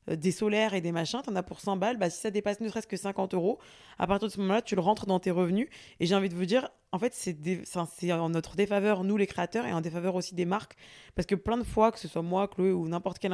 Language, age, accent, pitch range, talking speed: French, 20-39, French, 170-200 Hz, 290 wpm